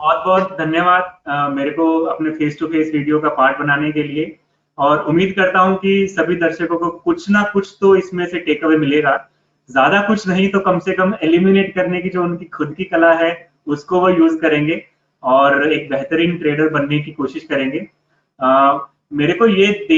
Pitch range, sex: 145-190 Hz, male